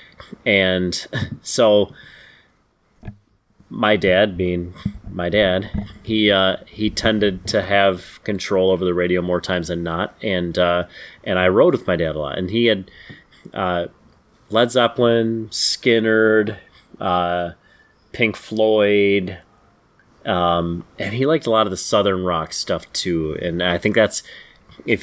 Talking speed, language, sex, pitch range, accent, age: 140 wpm, English, male, 90-100 Hz, American, 30-49